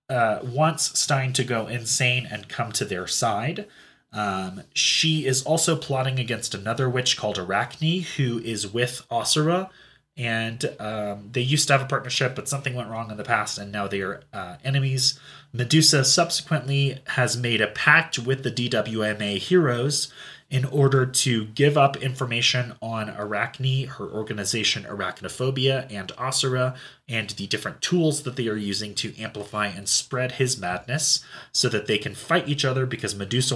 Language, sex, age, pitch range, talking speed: English, male, 30-49, 105-135 Hz, 165 wpm